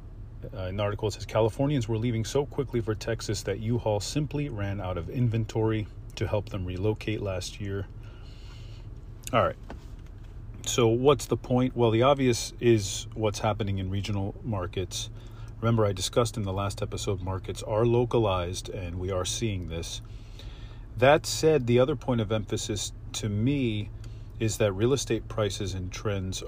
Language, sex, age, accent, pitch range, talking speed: English, male, 40-59, American, 100-115 Hz, 165 wpm